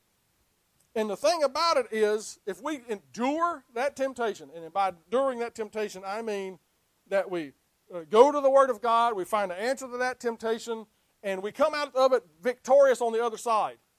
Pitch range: 215-285 Hz